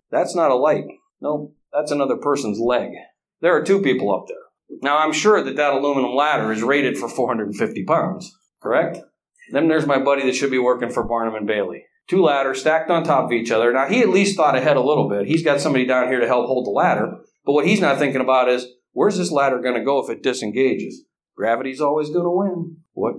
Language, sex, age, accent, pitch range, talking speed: English, male, 50-69, American, 125-160 Hz, 230 wpm